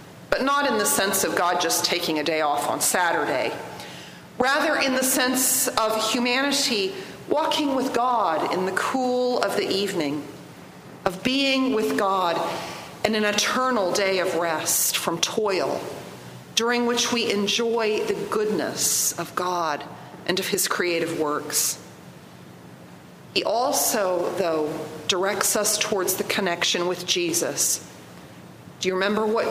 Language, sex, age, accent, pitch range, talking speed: English, female, 40-59, American, 160-245 Hz, 140 wpm